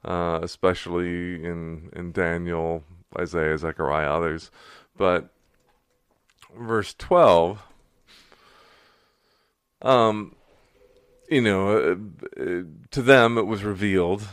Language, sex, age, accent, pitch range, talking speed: English, male, 40-59, American, 85-100 Hz, 90 wpm